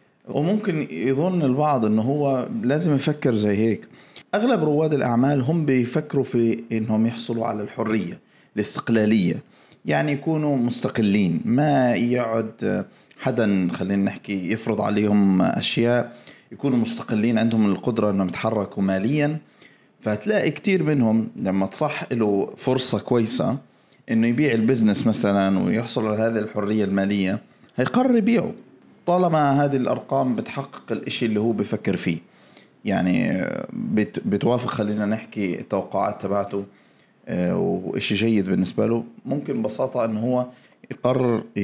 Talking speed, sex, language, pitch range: 115 wpm, male, Arabic, 105-135 Hz